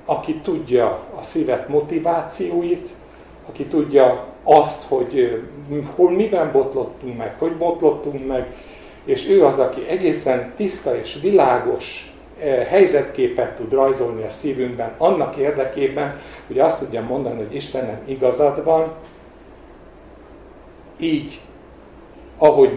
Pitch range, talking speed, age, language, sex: 125-170 Hz, 110 wpm, 50-69, Hungarian, male